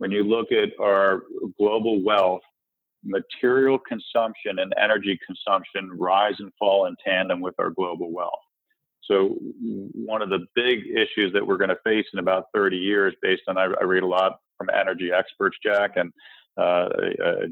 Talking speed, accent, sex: 170 wpm, American, male